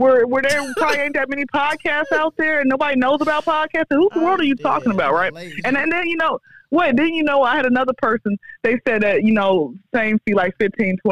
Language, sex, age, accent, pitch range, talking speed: English, female, 20-39, American, 185-255 Hz, 245 wpm